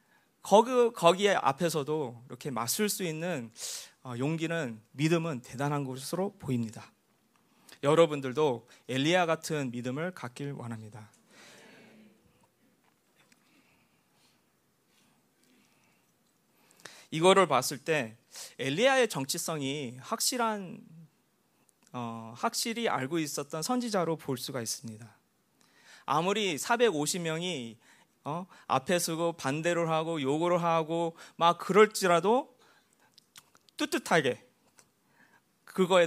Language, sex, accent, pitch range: Korean, male, native, 130-190 Hz